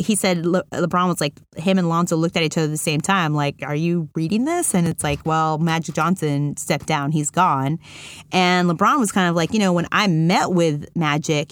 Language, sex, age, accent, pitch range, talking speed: English, female, 30-49, American, 155-205 Hz, 230 wpm